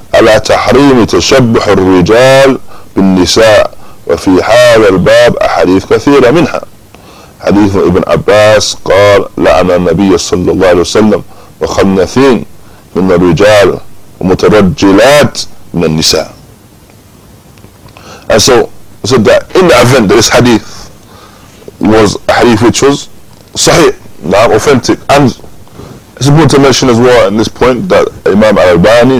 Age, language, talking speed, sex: 20-39, English, 130 wpm, male